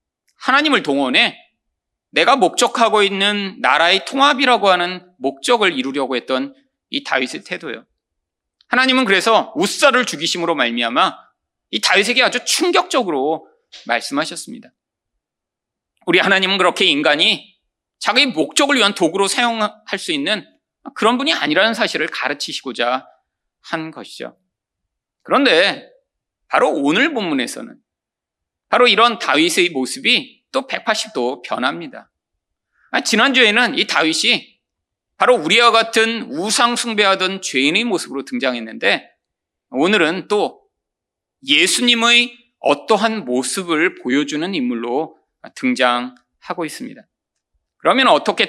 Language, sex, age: Korean, male, 40-59